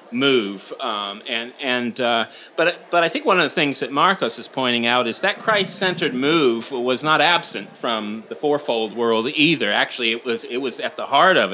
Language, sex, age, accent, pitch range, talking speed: English, male, 30-49, American, 115-165 Hz, 205 wpm